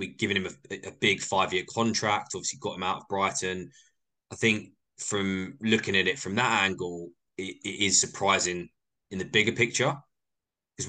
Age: 20-39